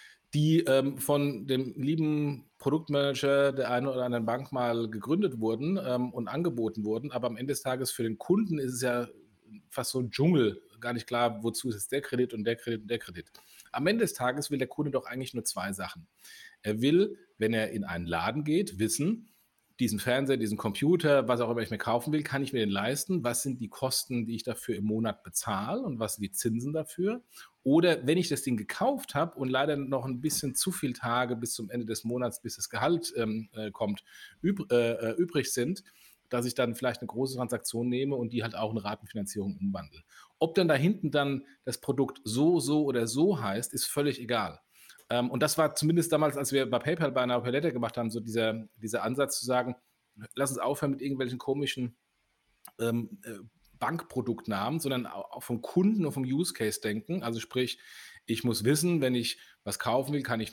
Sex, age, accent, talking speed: male, 40-59, German, 205 wpm